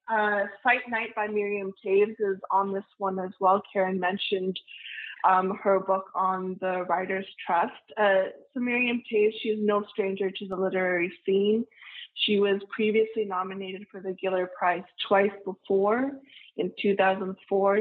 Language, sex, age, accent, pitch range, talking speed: English, female, 20-39, American, 190-215 Hz, 150 wpm